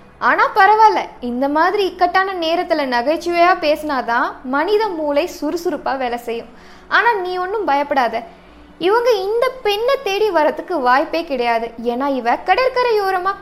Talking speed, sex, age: 120 wpm, female, 20-39